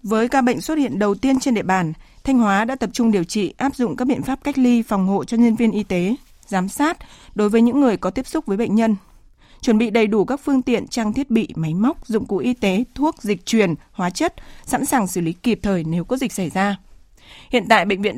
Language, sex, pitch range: Vietnamese, female, 195-250 Hz